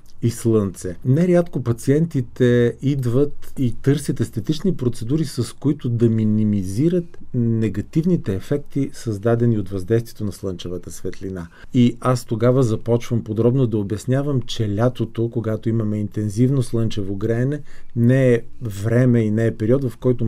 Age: 40-59